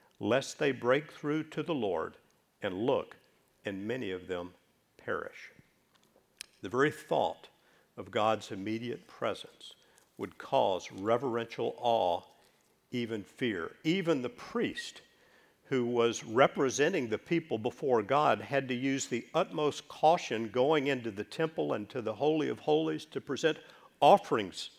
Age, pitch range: 50-69, 115-170 Hz